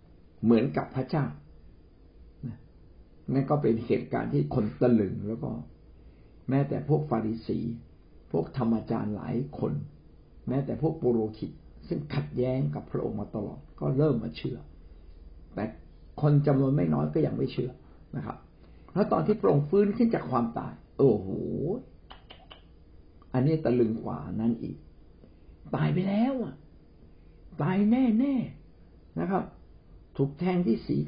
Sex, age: male, 60-79